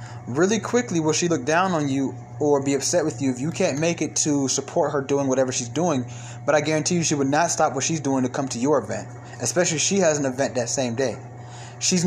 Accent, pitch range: American, 120-150 Hz